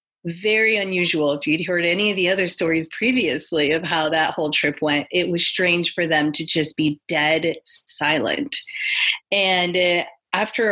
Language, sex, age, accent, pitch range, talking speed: English, female, 20-39, American, 160-205 Hz, 170 wpm